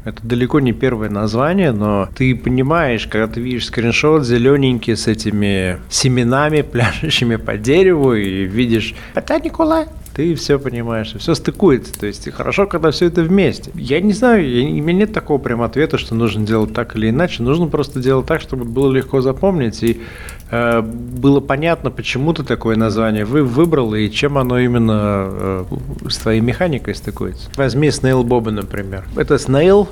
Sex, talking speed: male, 170 wpm